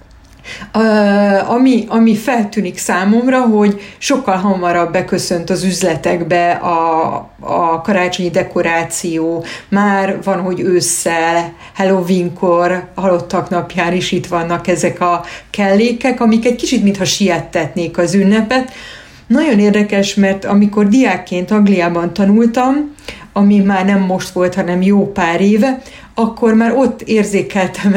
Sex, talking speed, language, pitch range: female, 120 wpm, Hungarian, 180-215 Hz